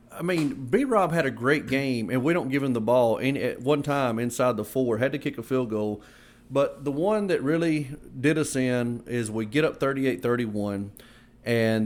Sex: male